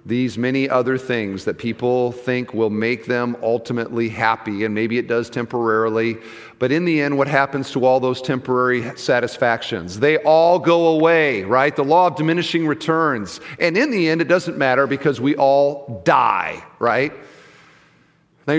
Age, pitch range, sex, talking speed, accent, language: 40-59, 125-175 Hz, male, 165 wpm, American, English